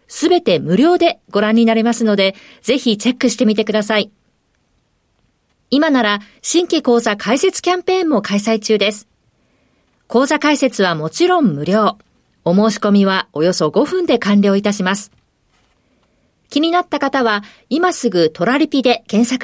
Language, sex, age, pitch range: Japanese, female, 40-59, 210-280 Hz